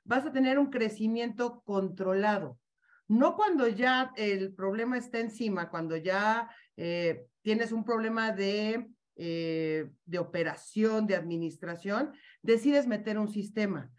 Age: 40-59